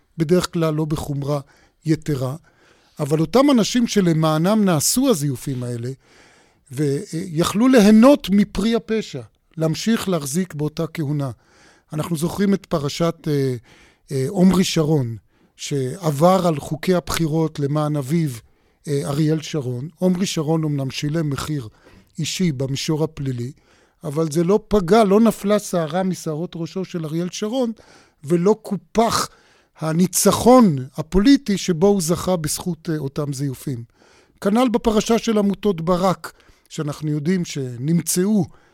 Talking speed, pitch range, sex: 115 wpm, 150-185 Hz, male